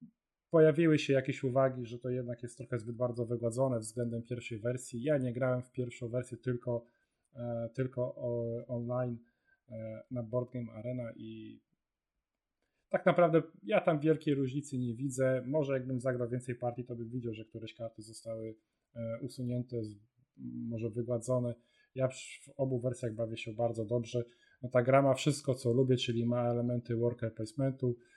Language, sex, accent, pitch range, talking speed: Polish, male, native, 120-135 Hz, 165 wpm